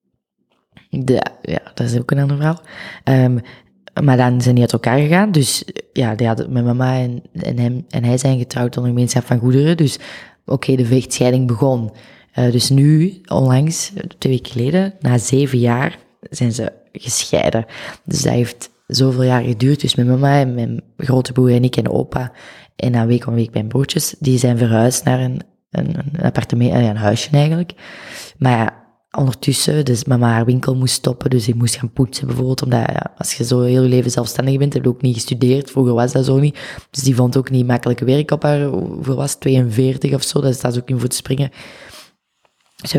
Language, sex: Dutch, female